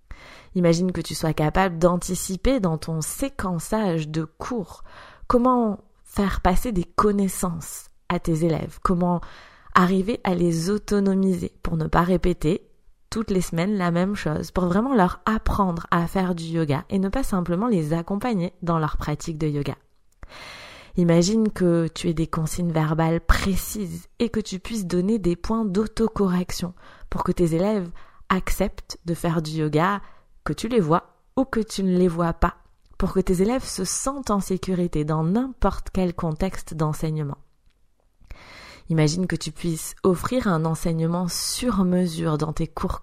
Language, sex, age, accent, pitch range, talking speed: French, female, 20-39, French, 165-195 Hz, 160 wpm